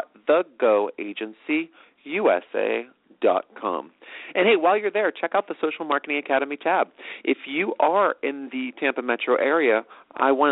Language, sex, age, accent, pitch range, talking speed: English, male, 40-59, American, 125-180 Hz, 130 wpm